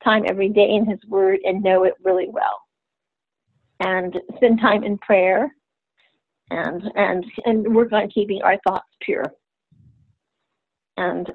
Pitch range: 200-235 Hz